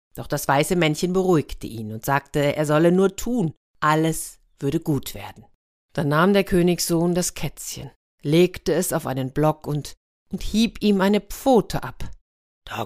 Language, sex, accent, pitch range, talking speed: German, female, German, 145-200 Hz, 165 wpm